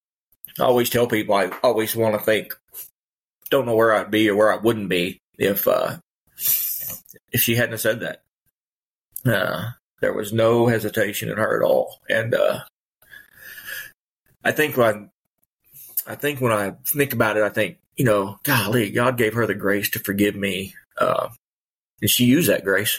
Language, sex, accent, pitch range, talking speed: English, male, American, 105-120 Hz, 170 wpm